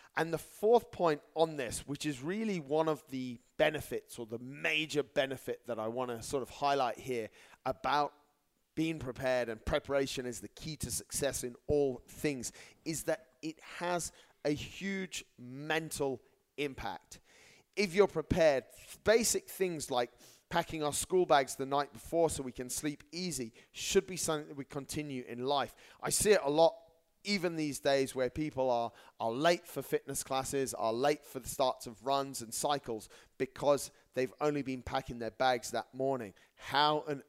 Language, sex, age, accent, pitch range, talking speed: English, male, 30-49, British, 125-155 Hz, 175 wpm